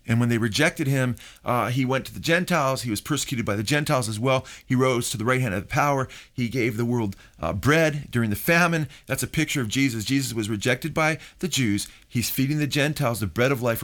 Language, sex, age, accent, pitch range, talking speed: English, male, 40-59, American, 115-140 Hz, 245 wpm